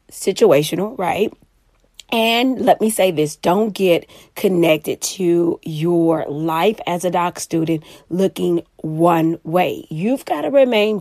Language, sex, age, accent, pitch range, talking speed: English, female, 30-49, American, 170-210 Hz, 130 wpm